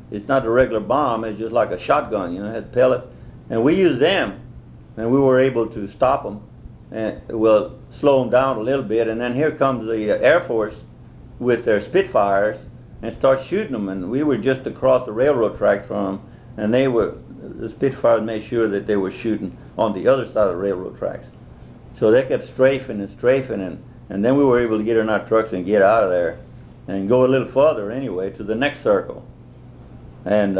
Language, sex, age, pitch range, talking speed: English, male, 50-69, 110-130 Hz, 210 wpm